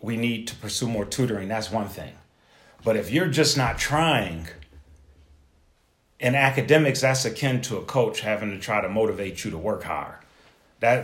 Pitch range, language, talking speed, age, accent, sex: 95-120 Hz, English, 175 wpm, 40-59, American, male